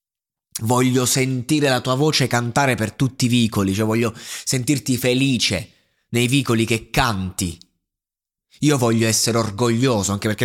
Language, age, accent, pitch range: Italian, 20-39, native, 95-125 Hz